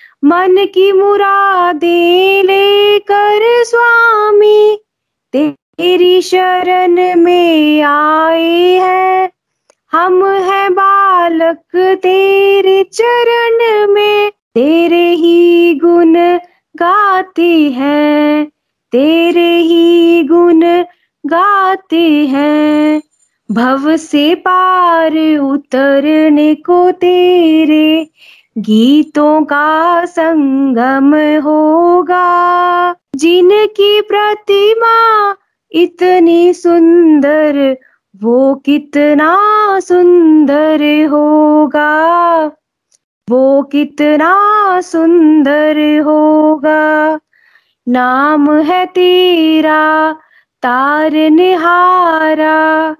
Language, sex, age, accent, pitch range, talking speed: Hindi, female, 20-39, native, 300-370 Hz, 60 wpm